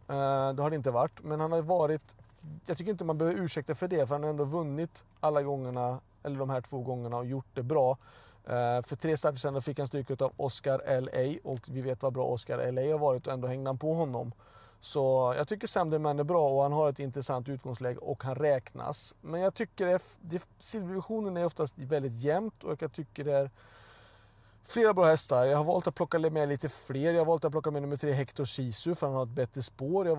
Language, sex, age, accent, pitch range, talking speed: Swedish, male, 30-49, native, 125-155 Hz, 235 wpm